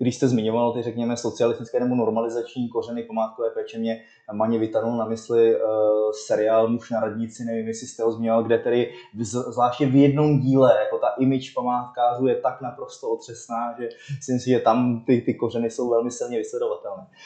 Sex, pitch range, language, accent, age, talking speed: male, 115-135 Hz, Czech, native, 20-39, 180 wpm